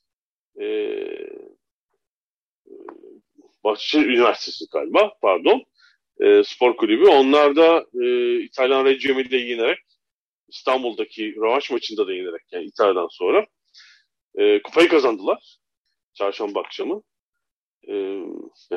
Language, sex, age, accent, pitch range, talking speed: Turkish, male, 40-59, native, 335-410 Hz, 95 wpm